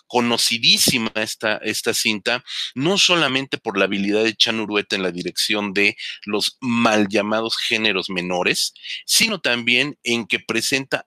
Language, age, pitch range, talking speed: Spanish, 40-59, 100-120 Hz, 140 wpm